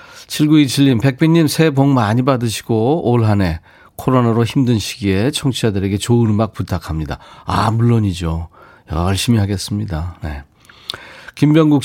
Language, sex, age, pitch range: Korean, male, 40-59, 100-145 Hz